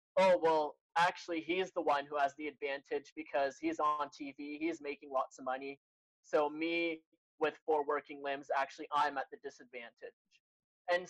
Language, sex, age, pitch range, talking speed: English, male, 20-39, 140-170 Hz, 170 wpm